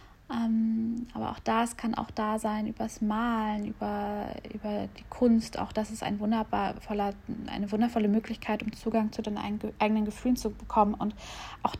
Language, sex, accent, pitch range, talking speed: German, female, German, 195-225 Hz, 160 wpm